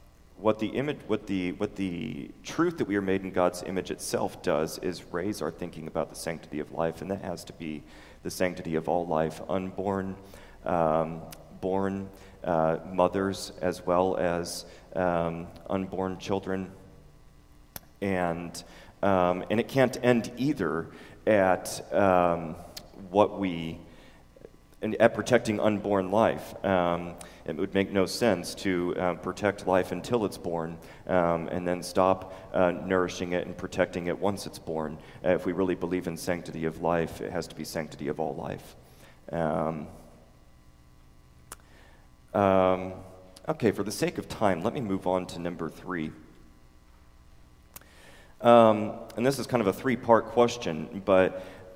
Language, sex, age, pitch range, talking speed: English, male, 30-49, 80-95 Hz, 150 wpm